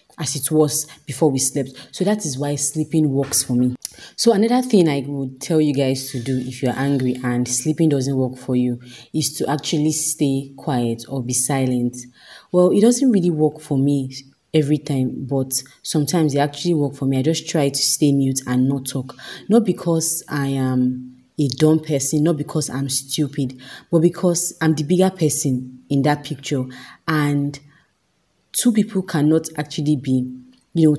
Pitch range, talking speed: 135-155 Hz, 180 wpm